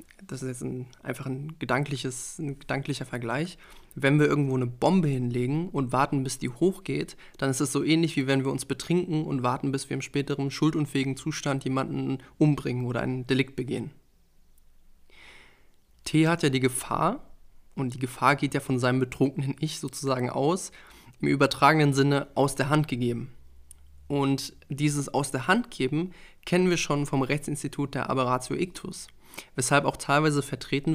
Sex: male